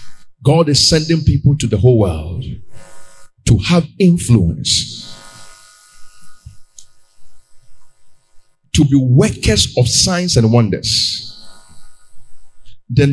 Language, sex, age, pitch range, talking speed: English, male, 50-69, 105-170 Hz, 85 wpm